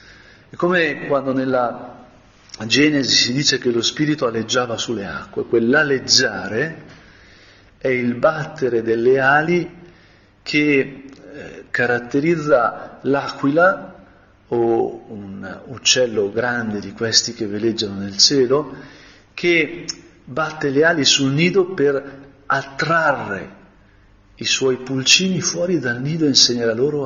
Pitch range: 105-135 Hz